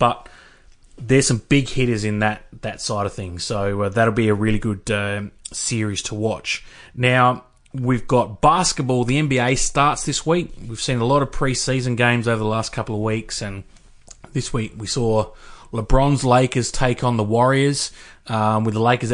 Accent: Australian